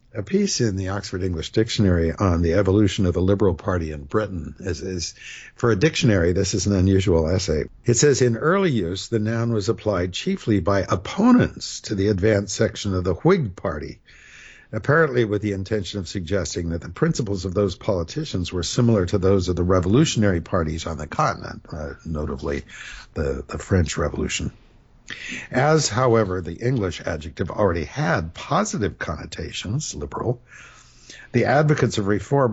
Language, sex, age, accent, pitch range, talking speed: English, male, 60-79, American, 90-120 Hz, 165 wpm